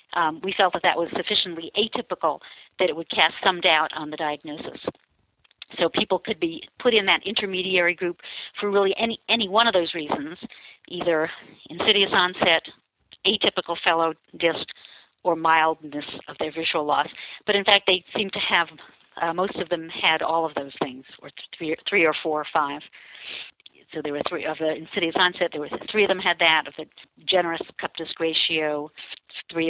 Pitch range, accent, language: 160-195 Hz, American, English